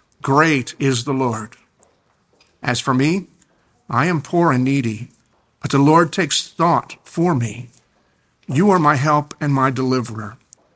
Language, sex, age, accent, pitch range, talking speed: English, male, 50-69, American, 125-155 Hz, 145 wpm